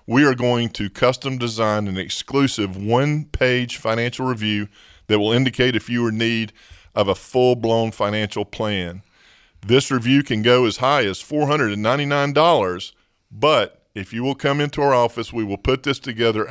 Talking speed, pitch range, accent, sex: 165 wpm, 105-130 Hz, American, male